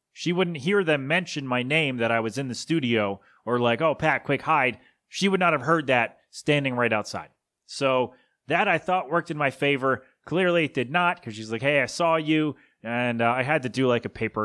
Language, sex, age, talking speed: English, male, 30-49, 235 wpm